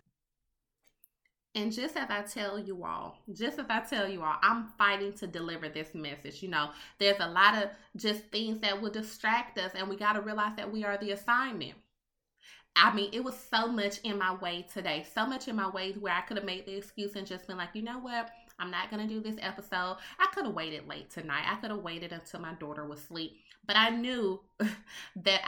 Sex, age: female, 20-39